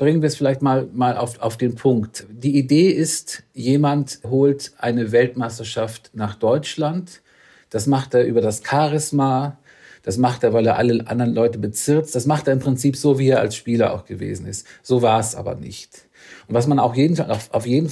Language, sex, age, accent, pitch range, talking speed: German, male, 50-69, German, 115-140 Hz, 195 wpm